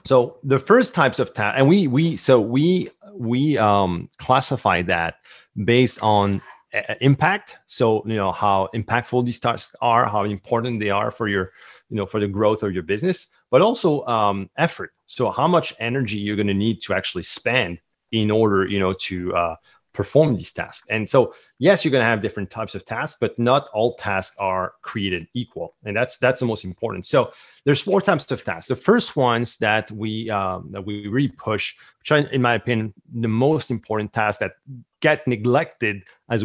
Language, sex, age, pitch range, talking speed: English, male, 30-49, 105-130 Hz, 195 wpm